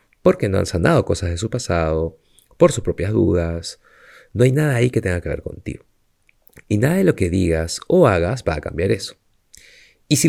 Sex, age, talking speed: male, 30-49, 205 wpm